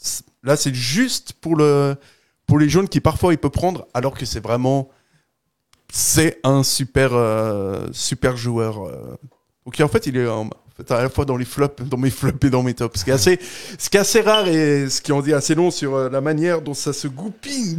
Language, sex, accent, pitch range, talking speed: French, male, French, 125-155 Hz, 225 wpm